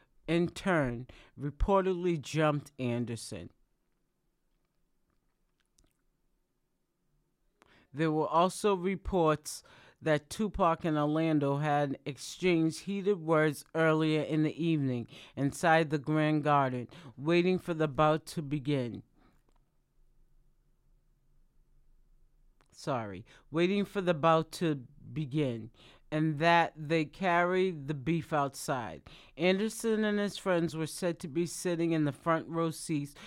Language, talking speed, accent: English, 105 wpm, American